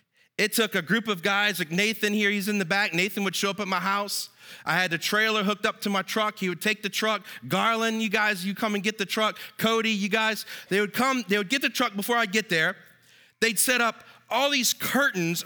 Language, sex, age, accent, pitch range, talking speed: English, male, 40-59, American, 175-220 Hz, 250 wpm